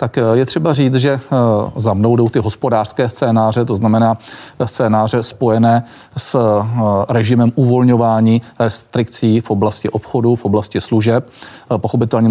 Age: 40-59